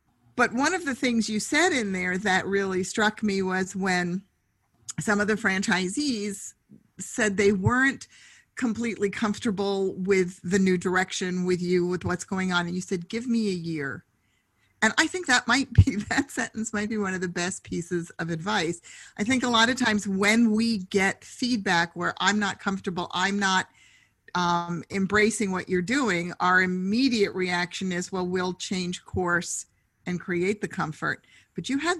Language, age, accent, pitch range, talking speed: English, 50-69, American, 175-220 Hz, 175 wpm